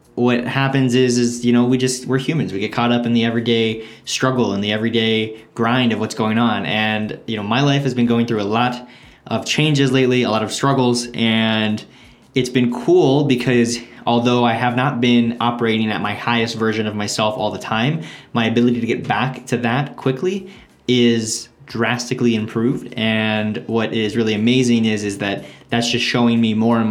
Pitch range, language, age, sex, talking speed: 105-125 Hz, English, 20-39, male, 200 wpm